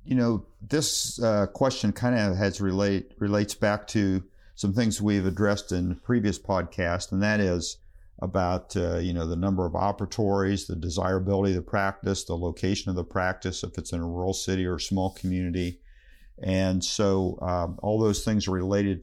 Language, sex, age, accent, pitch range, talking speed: English, male, 50-69, American, 90-100 Hz, 185 wpm